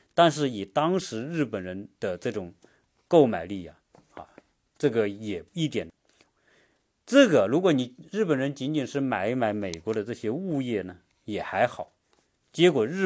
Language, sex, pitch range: Chinese, male, 105-155 Hz